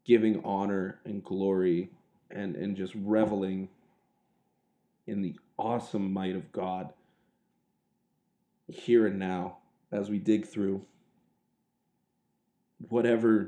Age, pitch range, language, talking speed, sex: 20-39, 95-110 Hz, English, 100 wpm, male